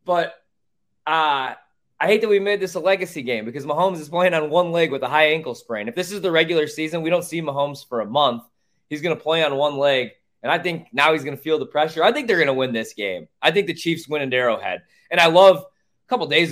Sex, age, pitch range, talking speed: male, 20-39, 135-170 Hz, 275 wpm